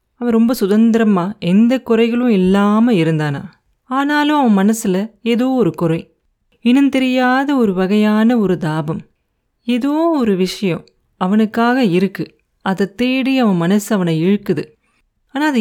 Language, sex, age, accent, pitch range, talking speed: Tamil, female, 30-49, native, 185-245 Hz, 120 wpm